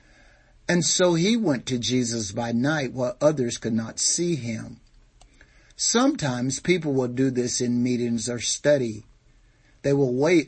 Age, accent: 60-79, American